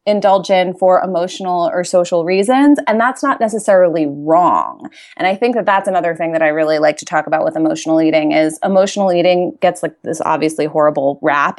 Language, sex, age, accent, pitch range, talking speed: English, female, 20-39, American, 165-220 Hz, 195 wpm